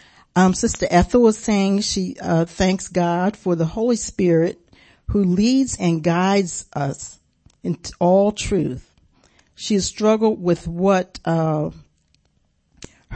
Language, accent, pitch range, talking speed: English, American, 165-195 Hz, 125 wpm